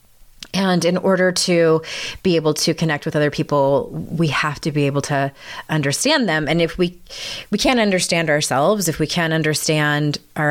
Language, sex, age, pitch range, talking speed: English, female, 30-49, 145-185 Hz, 175 wpm